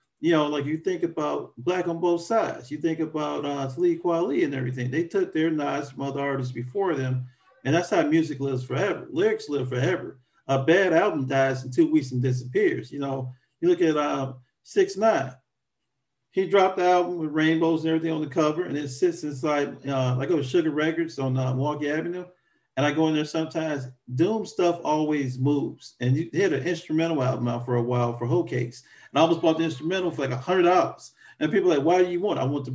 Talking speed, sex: 220 wpm, male